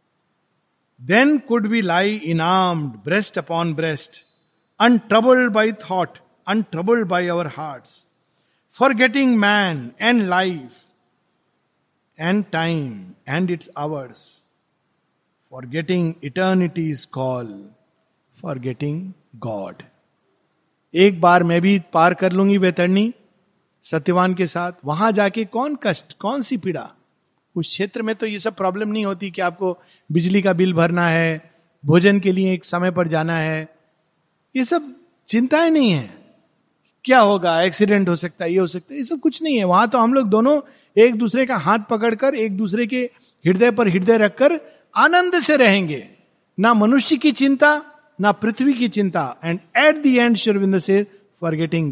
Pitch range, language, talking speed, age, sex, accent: 165-230 Hz, Hindi, 145 wpm, 50-69, male, native